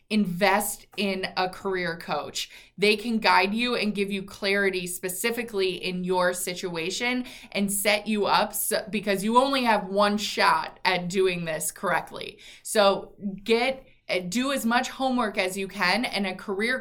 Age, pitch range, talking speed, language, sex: 20-39, 185-225 Hz, 155 wpm, English, female